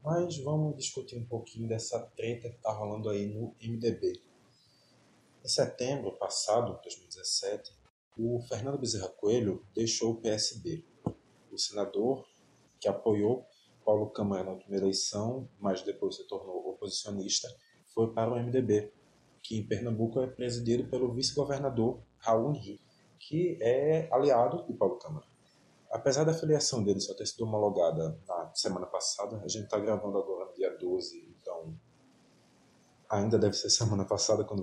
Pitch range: 110-140 Hz